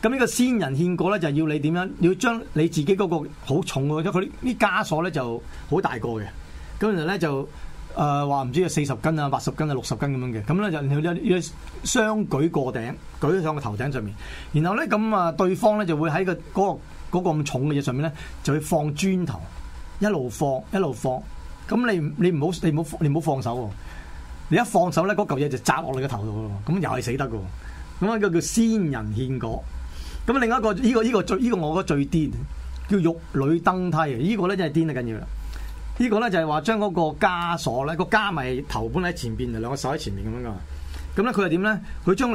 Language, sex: Chinese, male